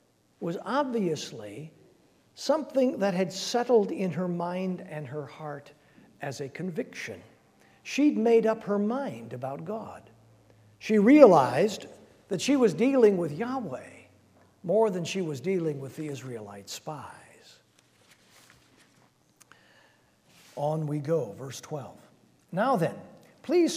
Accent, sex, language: American, male, English